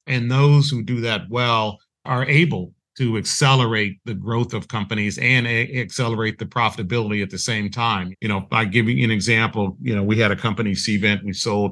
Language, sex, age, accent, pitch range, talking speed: English, male, 40-59, American, 105-125 Hz, 200 wpm